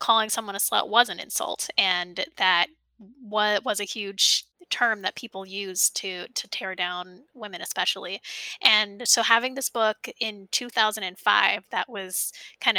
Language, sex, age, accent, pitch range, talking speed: English, female, 10-29, American, 195-285 Hz, 150 wpm